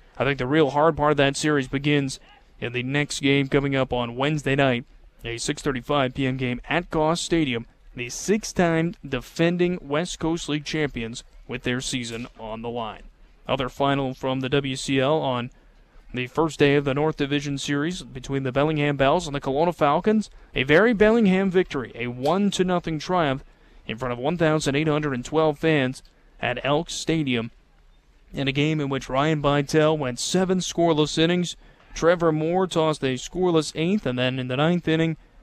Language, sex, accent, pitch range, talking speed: English, male, American, 130-165 Hz, 170 wpm